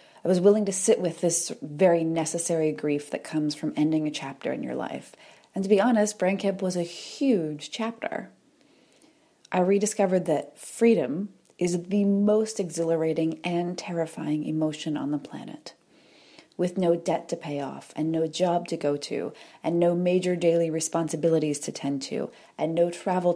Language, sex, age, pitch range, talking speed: English, female, 30-49, 160-195 Hz, 165 wpm